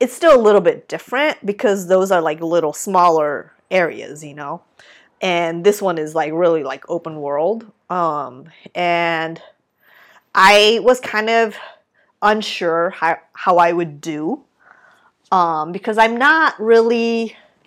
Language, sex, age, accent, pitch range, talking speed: English, female, 30-49, American, 170-230 Hz, 140 wpm